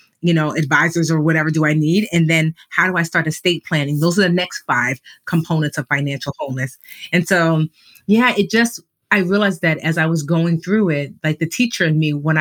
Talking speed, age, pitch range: 220 wpm, 30-49, 155-185 Hz